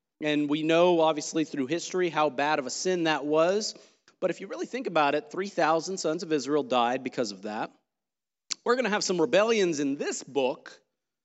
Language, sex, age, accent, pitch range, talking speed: English, male, 40-59, American, 140-185 Hz, 195 wpm